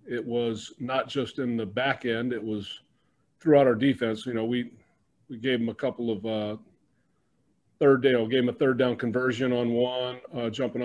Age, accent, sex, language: 40-59, American, male, English